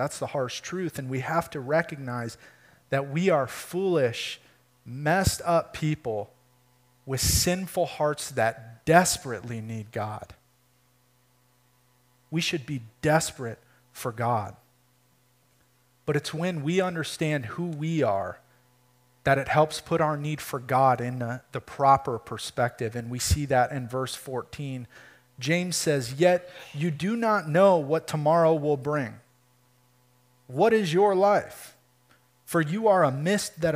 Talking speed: 140 wpm